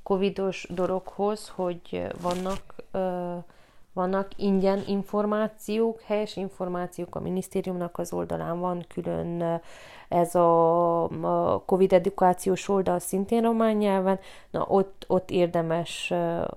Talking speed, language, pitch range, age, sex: 100 wpm, Hungarian, 170-195 Hz, 30-49, female